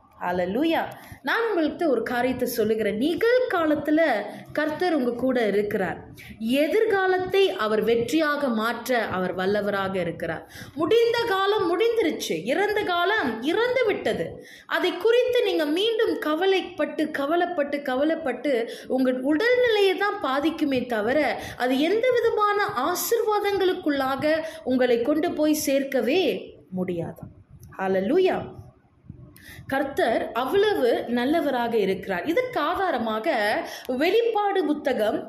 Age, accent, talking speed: 20-39, native, 90 wpm